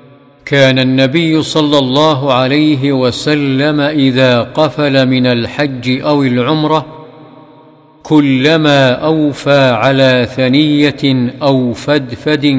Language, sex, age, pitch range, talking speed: Arabic, male, 50-69, 125-140 Hz, 85 wpm